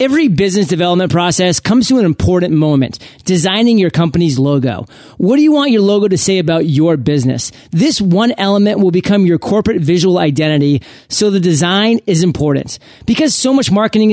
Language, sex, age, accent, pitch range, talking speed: English, male, 30-49, American, 165-210 Hz, 180 wpm